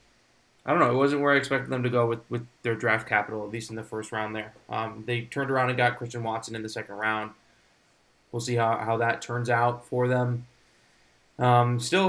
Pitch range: 110-125 Hz